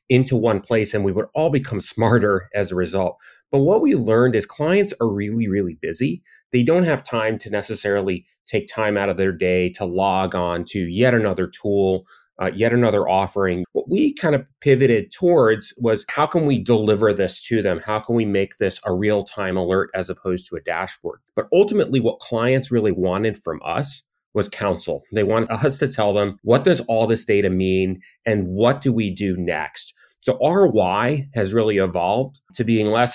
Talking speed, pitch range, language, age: 200 wpm, 95-125 Hz, English, 30-49